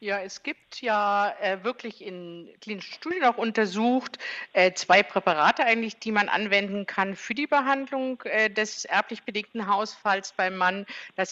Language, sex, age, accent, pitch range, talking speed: German, female, 50-69, German, 195-250 Hz, 160 wpm